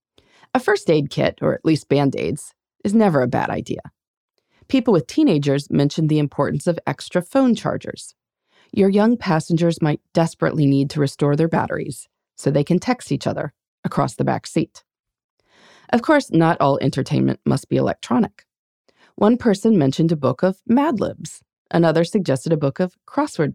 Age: 30-49